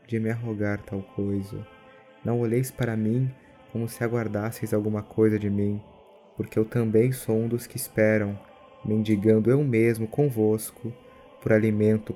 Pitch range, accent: 105-115 Hz, Brazilian